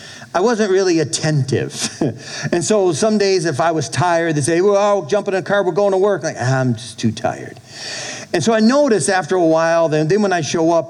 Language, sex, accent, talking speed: English, male, American, 235 wpm